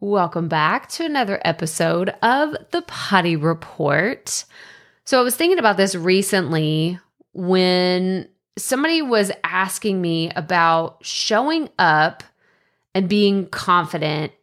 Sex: female